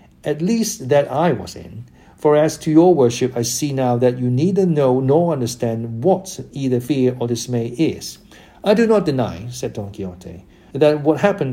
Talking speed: 185 wpm